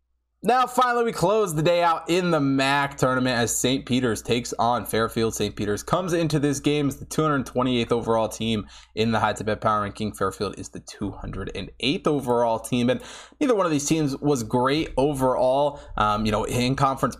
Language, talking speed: English, 195 wpm